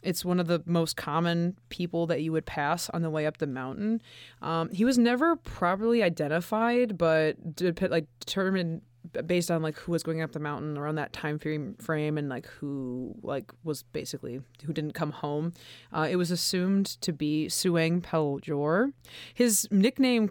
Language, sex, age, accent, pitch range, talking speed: English, female, 20-39, American, 145-180 Hz, 180 wpm